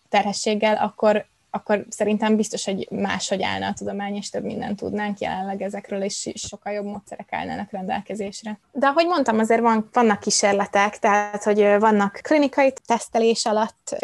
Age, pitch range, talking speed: 20-39, 200-225 Hz, 150 wpm